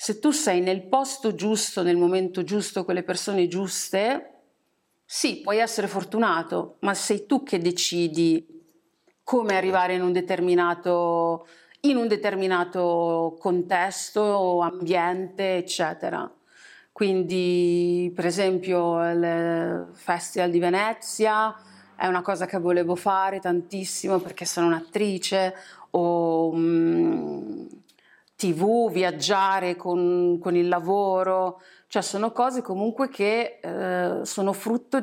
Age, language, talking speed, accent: 40-59, Italian, 115 wpm, native